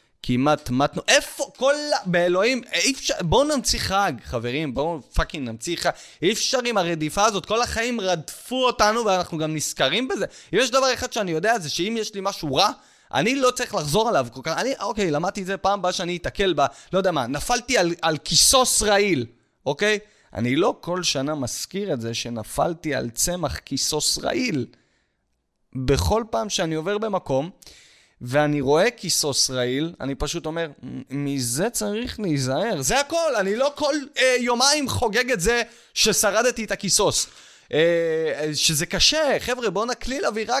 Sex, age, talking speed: male, 30-49, 165 wpm